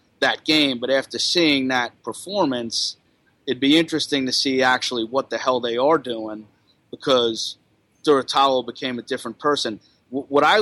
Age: 30-49